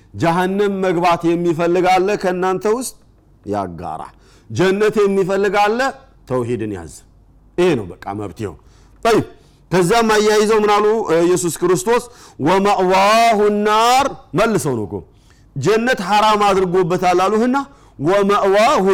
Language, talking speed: Amharic, 100 wpm